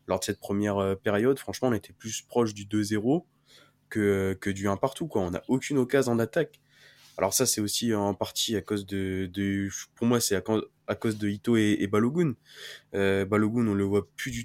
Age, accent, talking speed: 20-39, French, 210 wpm